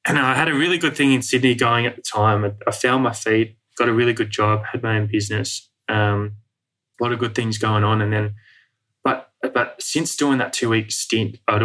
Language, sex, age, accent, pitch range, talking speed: English, male, 10-29, Australian, 105-115 Hz, 235 wpm